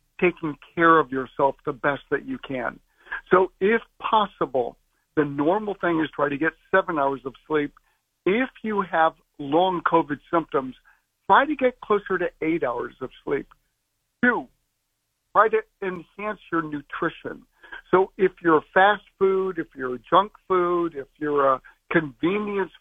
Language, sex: English, male